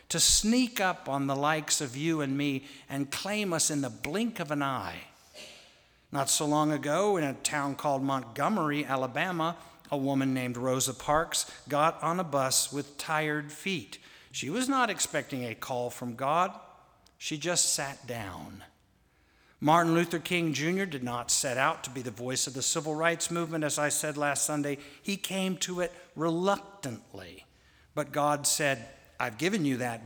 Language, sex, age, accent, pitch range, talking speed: English, male, 60-79, American, 135-175 Hz, 175 wpm